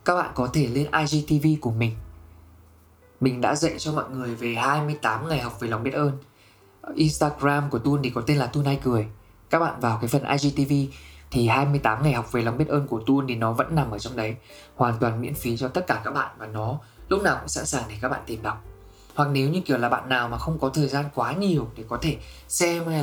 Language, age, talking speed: Vietnamese, 20-39, 250 wpm